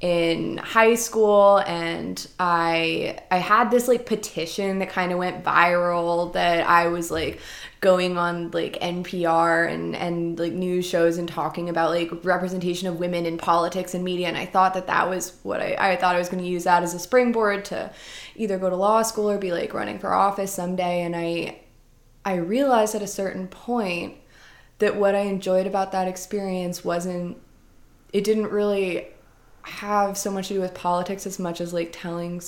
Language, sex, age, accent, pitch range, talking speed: English, female, 20-39, American, 170-195 Hz, 190 wpm